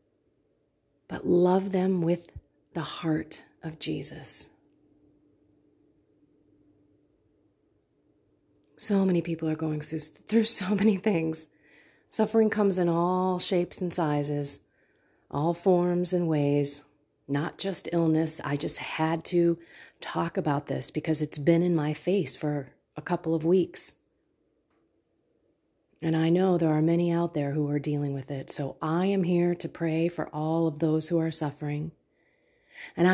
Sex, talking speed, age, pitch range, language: female, 140 wpm, 30-49, 155-205 Hz, English